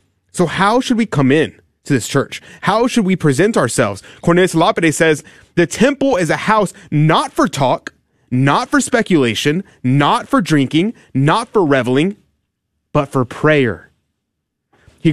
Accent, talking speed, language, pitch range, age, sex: American, 150 wpm, English, 140-200 Hz, 30-49, male